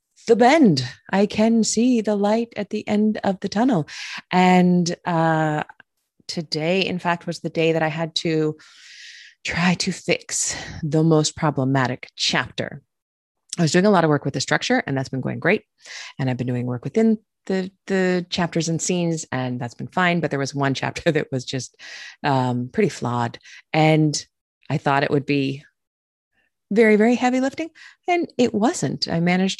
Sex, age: female, 30-49